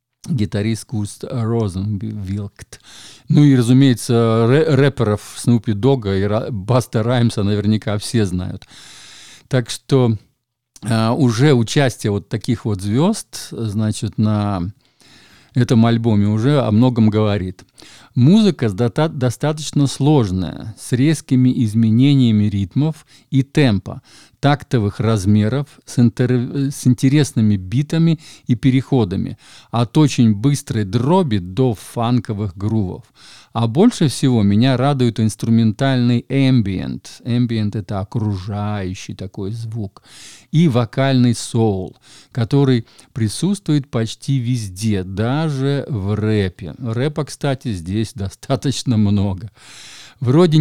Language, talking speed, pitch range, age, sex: Russian, 100 wpm, 105-135 Hz, 50-69, male